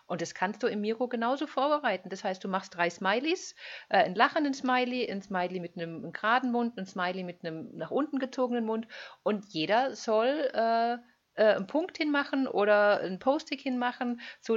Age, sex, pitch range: 50-69, female, 185-245 Hz